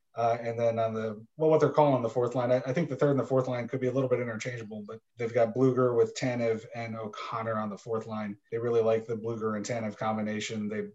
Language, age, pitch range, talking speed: English, 30-49, 110-130 Hz, 270 wpm